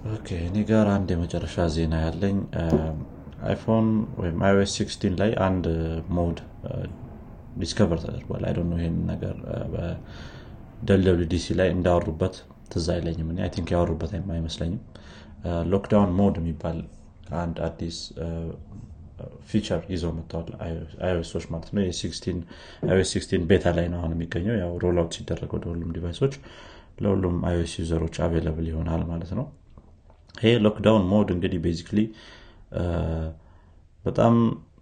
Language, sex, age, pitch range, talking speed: Amharic, male, 30-49, 85-100 Hz, 100 wpm